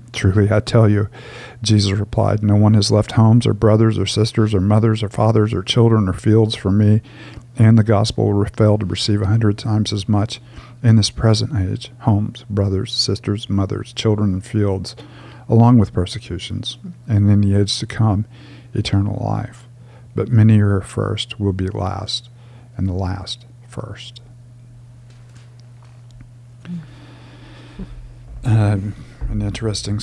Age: 50-69